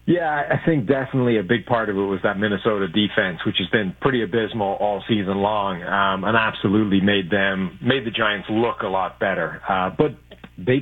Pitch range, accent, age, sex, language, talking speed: 100-120 Hz, American, 40-59, male, English, 200 wpm